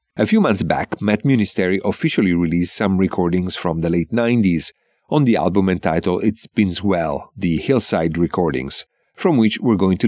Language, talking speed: English, 175 wpm